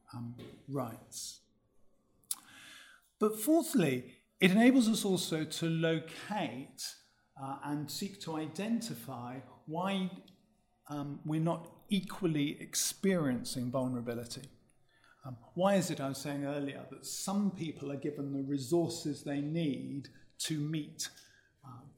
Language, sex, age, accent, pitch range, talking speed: English, male, 50-69, British, 130-170 Hz, 115 wpm